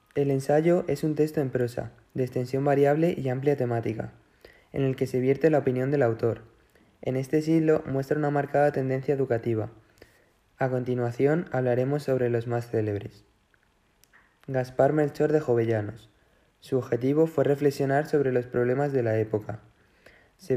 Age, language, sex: 20-39, Spanish, male